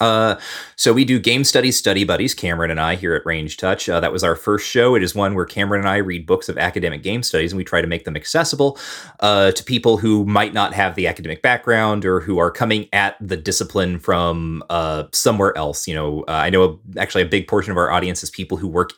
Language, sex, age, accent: English, male, 30-49, American